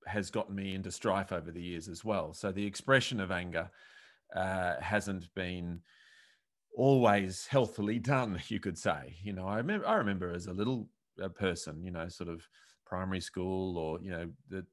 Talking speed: 180 wpm